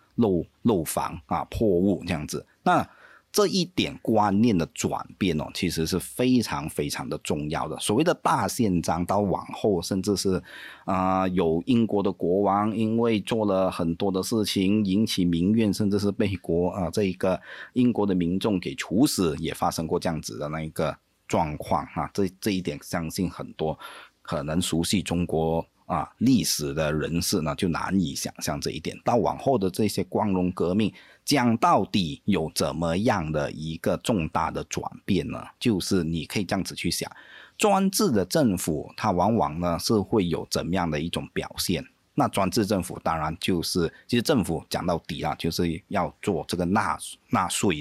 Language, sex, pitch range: Chinese, male, 85-105 Hz